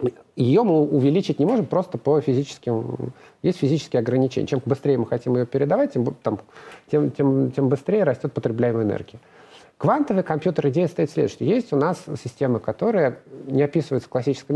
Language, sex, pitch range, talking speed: Russian, male, 125-160 Hz, 160 wpm